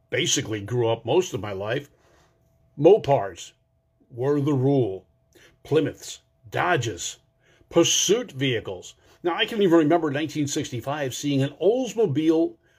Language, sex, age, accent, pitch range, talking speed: English, male, 50-69, American, 130-200 Hz, 115 wpm